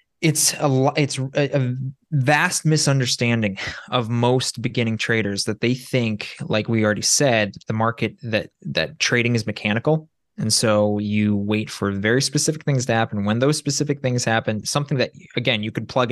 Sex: male